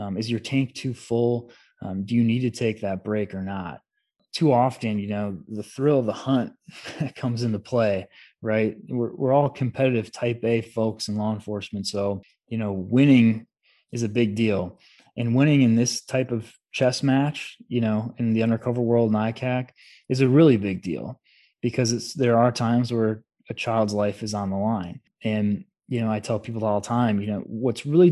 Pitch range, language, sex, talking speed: 110-130 Hz, English, male, 200 wpm